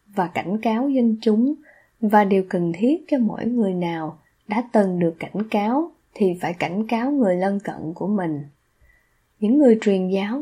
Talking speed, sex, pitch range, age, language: 180 wpm, female, 185-240 Hz, 20-39, Vietnamese